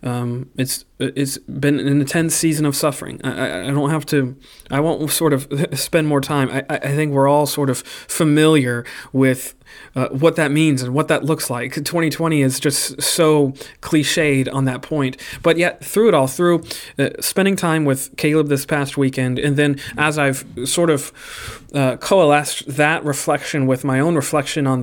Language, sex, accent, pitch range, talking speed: English, male, American, 135-160 Hz, 185 wpm